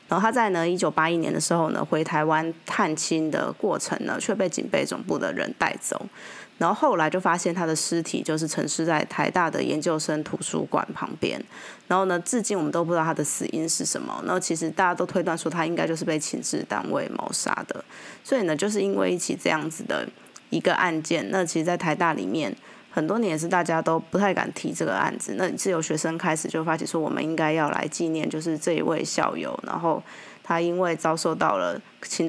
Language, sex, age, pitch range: Chinese, female, 20-39, 160-195 Hz